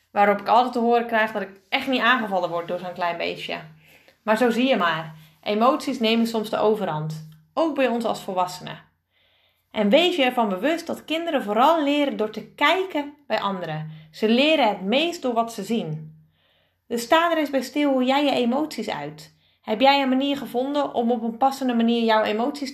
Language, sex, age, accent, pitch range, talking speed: Dutch, female, 30-49, Dutch, 190-265 Hz, 200 wpm